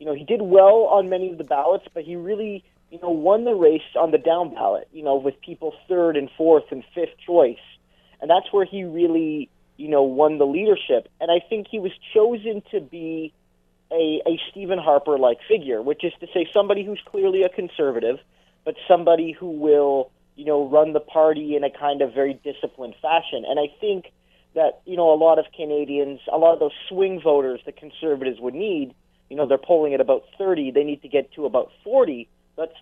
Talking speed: 210 wpm